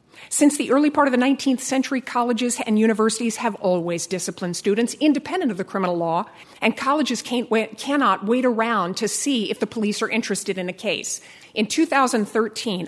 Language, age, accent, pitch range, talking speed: English, 50-69, American, 200-260 Hz, 170 wpm